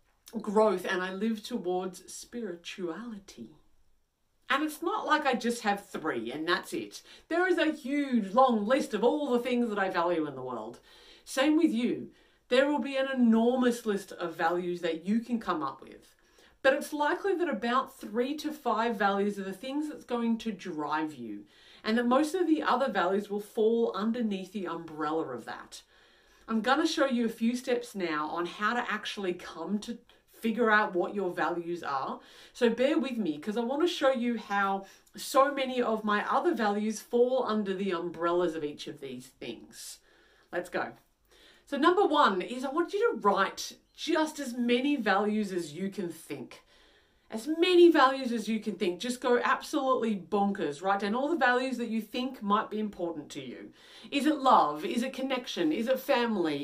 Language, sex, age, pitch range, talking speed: English, female, 40-59, 195-265 Hz, 190 wpm